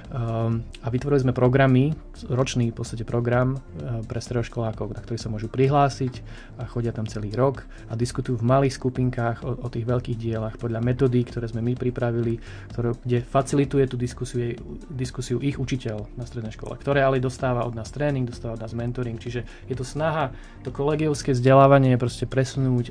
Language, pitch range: Slovak, 115-130 Hz